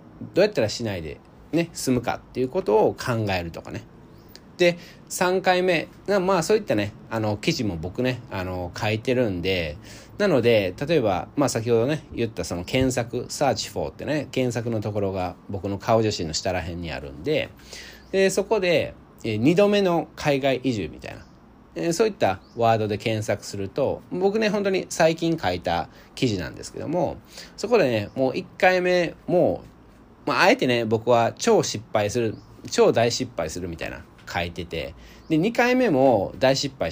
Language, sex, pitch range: Japanese, male, 100-165 Hz